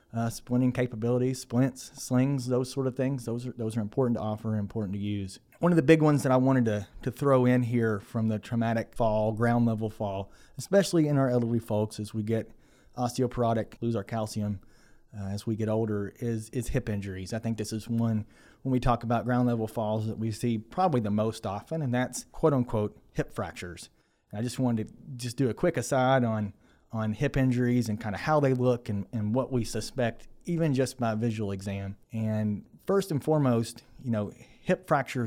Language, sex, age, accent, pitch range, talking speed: English, male, 30-49, American, 110-130 Hz, 210 wpm